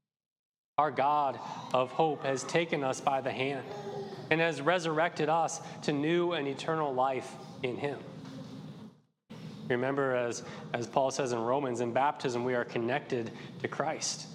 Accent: American